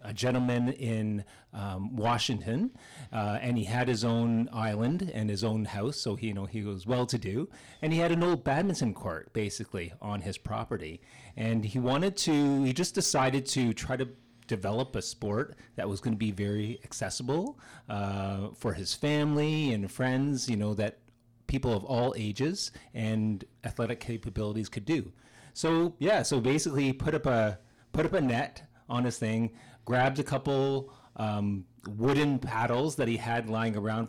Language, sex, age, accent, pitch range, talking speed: English, male, 30-49, American, 110-135 Hz, 170 wpm